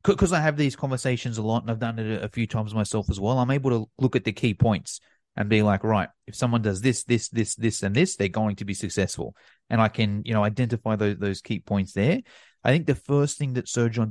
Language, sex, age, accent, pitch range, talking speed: English, male, 30-49, Australian, 110-135 Hz, 265 wpm